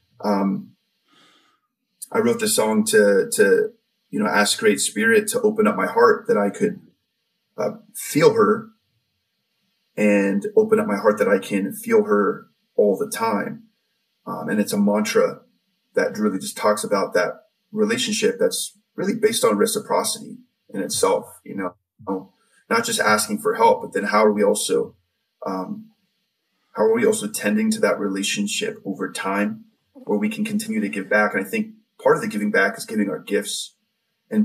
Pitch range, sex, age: 210-230 Hz, male, 20-39